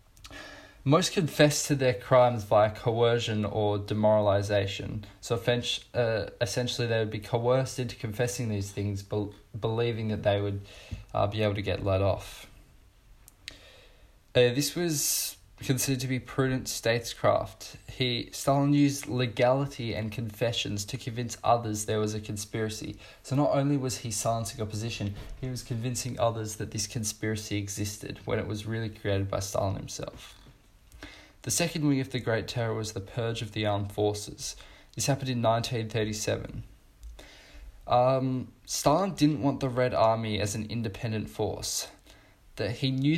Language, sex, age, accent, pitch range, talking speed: English, male, 20-39, Australian, 105-125 Hz, 145 wpm